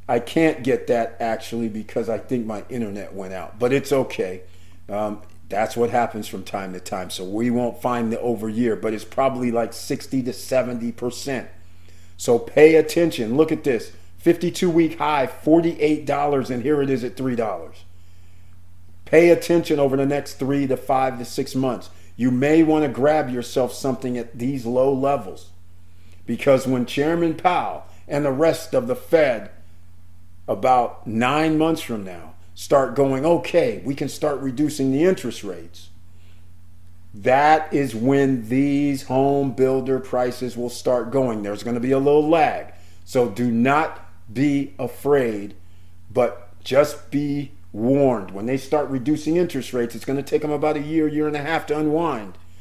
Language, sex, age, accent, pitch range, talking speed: English, male, 50-69, American, 100-145 Hz, 170 wpm